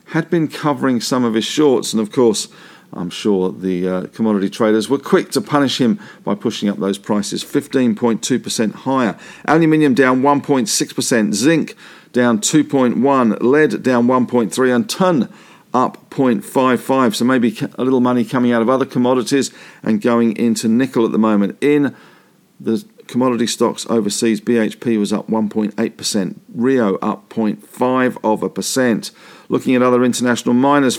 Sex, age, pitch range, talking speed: male, 50-69, 115-140 Hz, 145 wpm